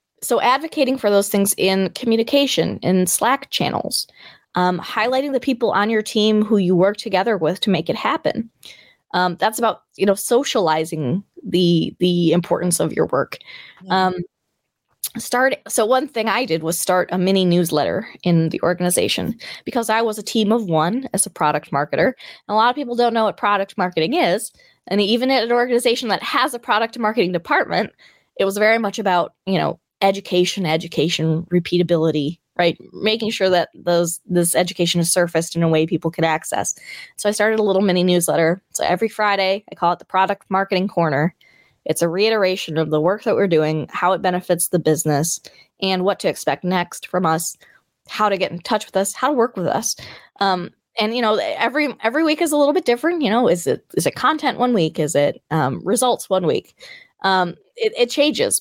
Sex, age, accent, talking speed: female, 20-39, American, 195 wpm